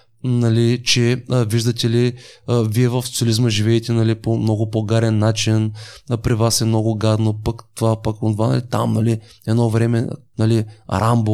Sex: male